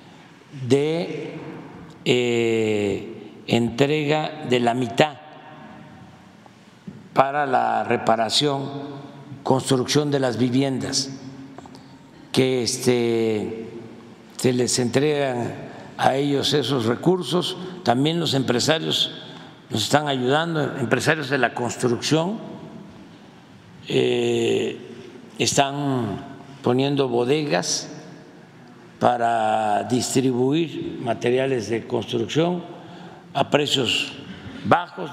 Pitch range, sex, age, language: 120-155 Hz, male, 60-79, Spanish